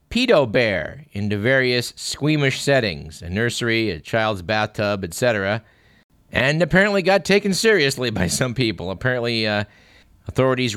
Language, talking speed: English, 125 wpm